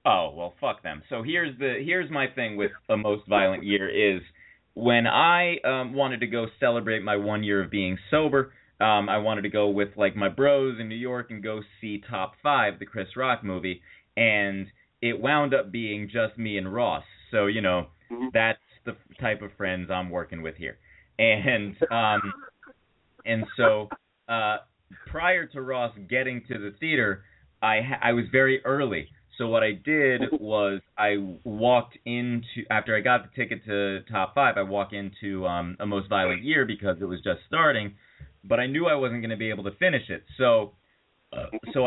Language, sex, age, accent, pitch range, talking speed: English, male, 30-49, American, 100-130 Hz, 190 wpm